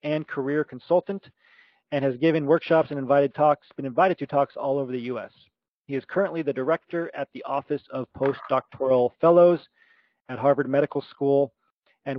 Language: English